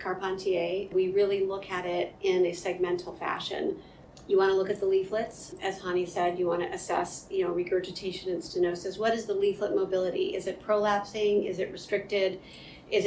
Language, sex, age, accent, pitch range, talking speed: English, female, 40-59, American, 180-215 Hz, 190 wpm